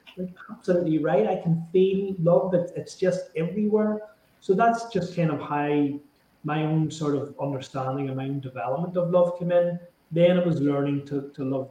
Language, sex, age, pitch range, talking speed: English, male, 30-49, 135-175 Hz, 190 wpm